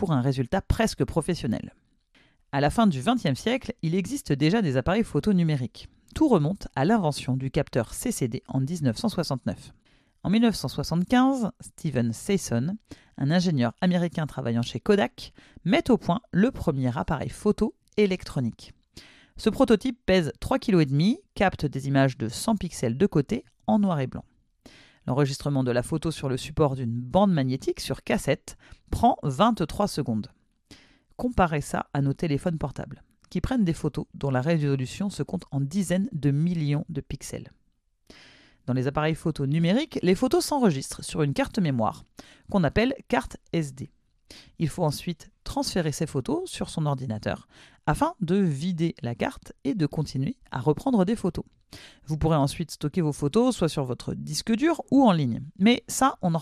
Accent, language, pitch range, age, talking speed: French, French, 140-200 Hz, 40-59, 165 wpm